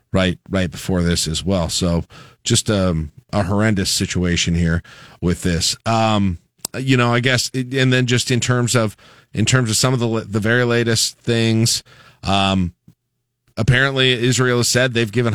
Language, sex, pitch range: English, male, 95-120 Hz